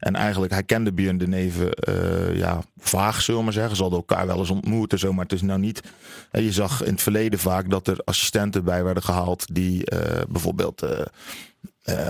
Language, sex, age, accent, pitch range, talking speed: Dutch, male, 40-59, Dutch, 95-110 Hz, 220 wpm